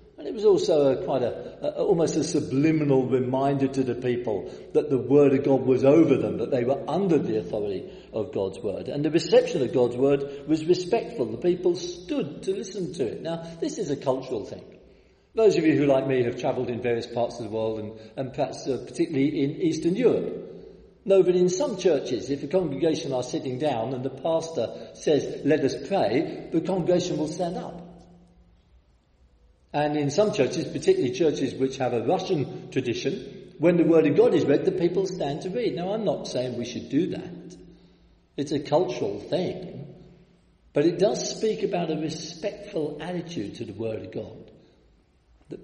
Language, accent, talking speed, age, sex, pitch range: English, British, 190 wpm, 50-69, male, 125-180 Hz